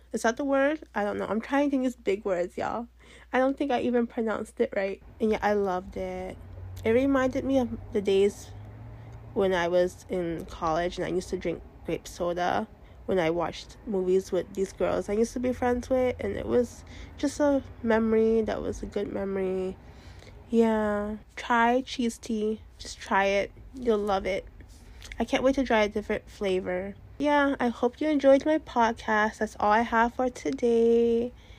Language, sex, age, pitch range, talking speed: English, female, 20-39, 195-265 Hz, 190 wpm